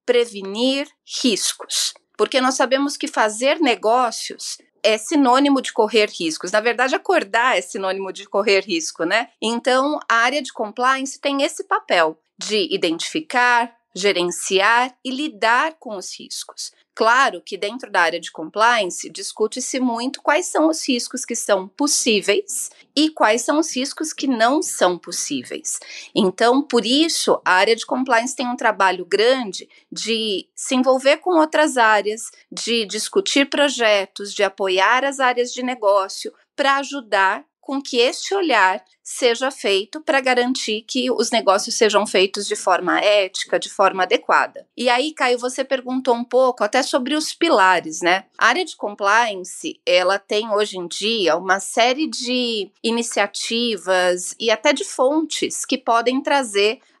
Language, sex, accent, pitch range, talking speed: Portuguese, female, Brazilian, 210-280 Hz, 150 wpm